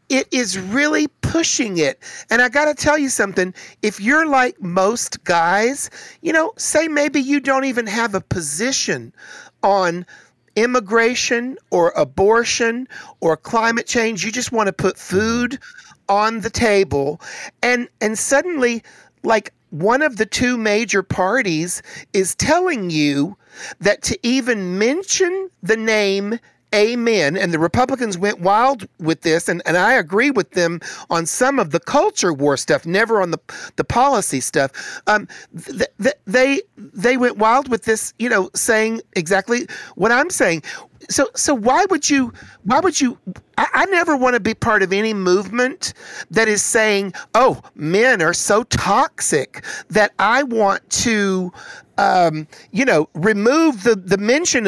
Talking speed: 155 wpm